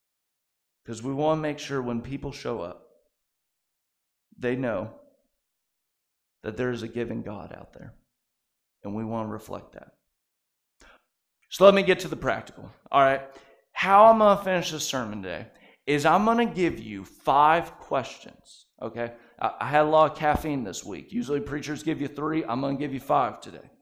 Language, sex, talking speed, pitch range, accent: English, male, 180 wpm, 125-170 Hz, American